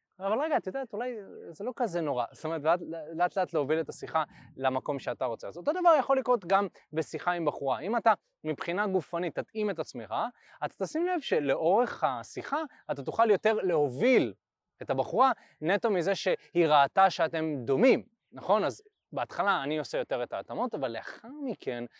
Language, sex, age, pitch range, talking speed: Hebrew, male, 20-39, 155-245 Hz, 170 wpm